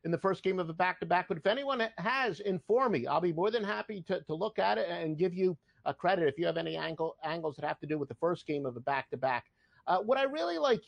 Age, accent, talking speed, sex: 50-69, American, 275 wpm, male